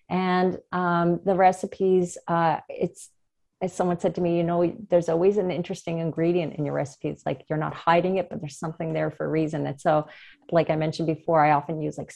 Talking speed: 215 wpm